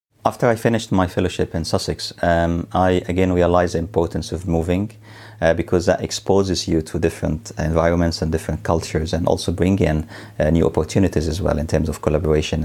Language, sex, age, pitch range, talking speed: English, male, 30-49, 80-90 Hz, 185 wpm